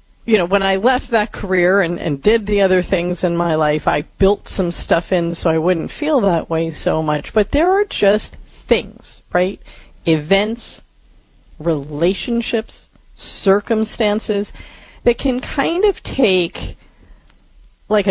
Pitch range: 165-210 Hz